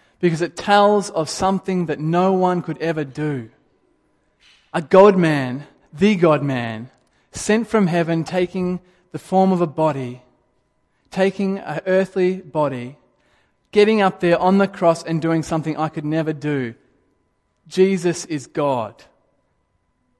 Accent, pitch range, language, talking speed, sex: Australian, 150-190 Hz, English, 130 wpm, male